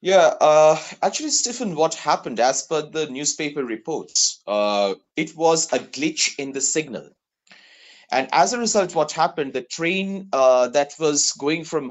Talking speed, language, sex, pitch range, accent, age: 160 wpm, English, male, 135-175 Hz, Indian, 30-49